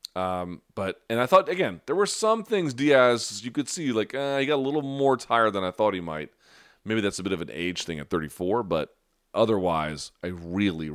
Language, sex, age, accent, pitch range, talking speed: English, male, 30-49, American, 85-110 Hz, 230 wpm